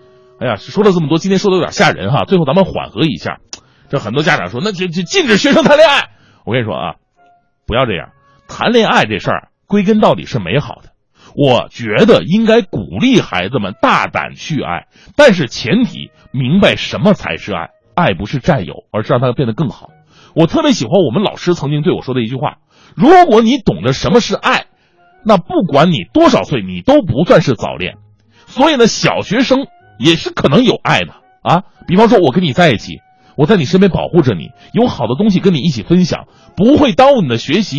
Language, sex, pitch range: Chinese, male, 150-225 Hz